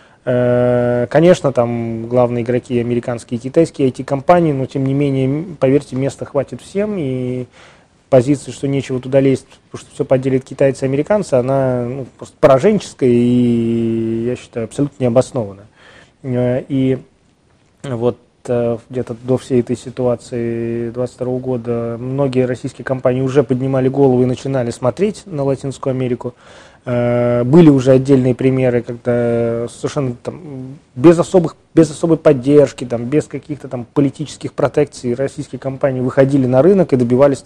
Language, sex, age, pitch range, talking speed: Russian, male, 20-39, 120-140 Hz, 135 wpm